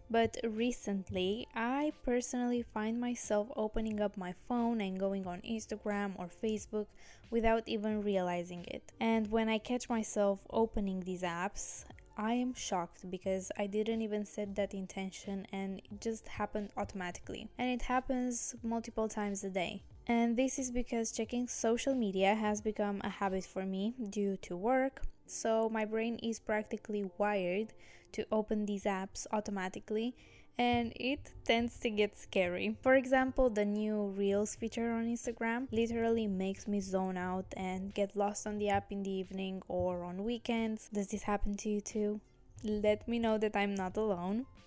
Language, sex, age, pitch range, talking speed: English, female, 10-29, 200-230 Hz, 165 wpm